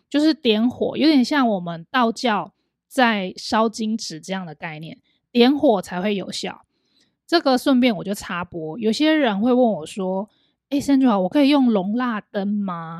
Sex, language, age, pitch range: female, Chinese, 20-39, 185-250 Hz